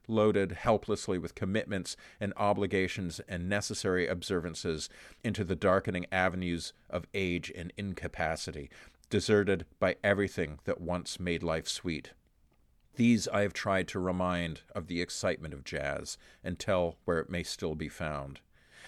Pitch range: 90-125 Hz